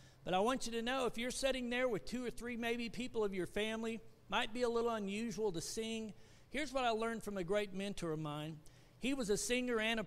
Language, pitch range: English, 175-225 Hz